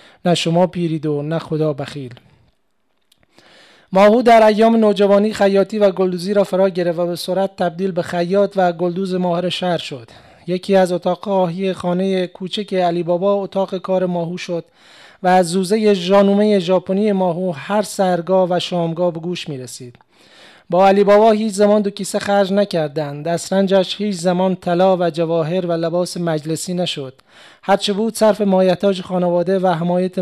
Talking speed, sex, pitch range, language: 160 wpm, male, 175-195 Hz, Persian